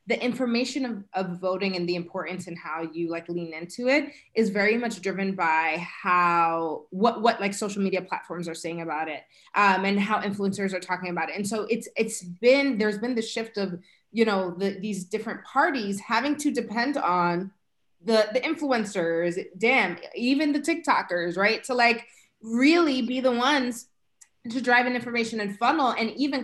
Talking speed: 185 wpm